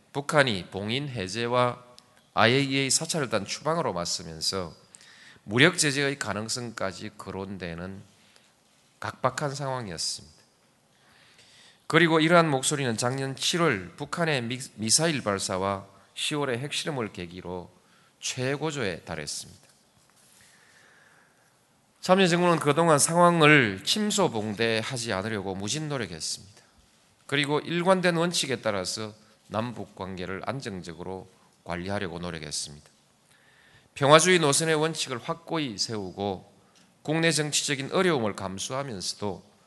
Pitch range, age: 95-145 Hz, 40-59